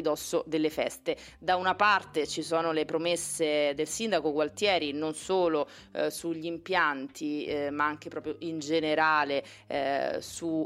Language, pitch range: Italian, 150-170 Hz